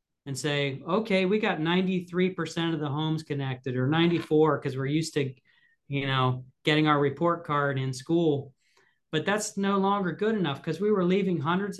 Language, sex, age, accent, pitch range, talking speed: English, male, 40-59, American, 145-180 Hz, 175 wpm